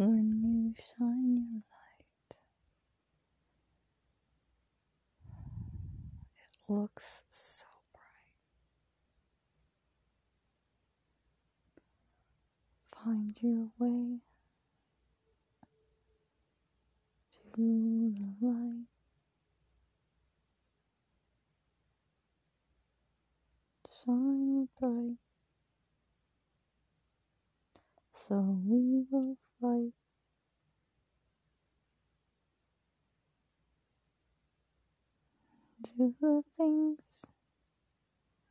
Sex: female